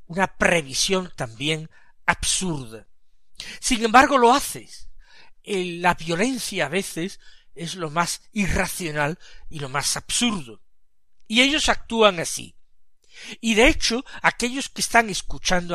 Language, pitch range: Spanish, 170-240 Hz